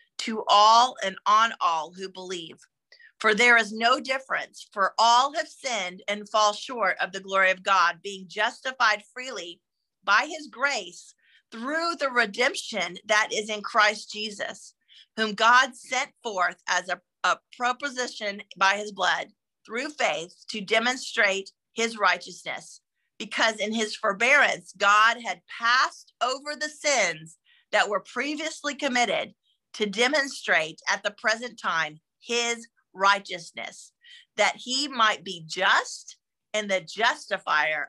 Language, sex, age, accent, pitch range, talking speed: English, female, 40-59, American, 195-255 Hz, 135 wpm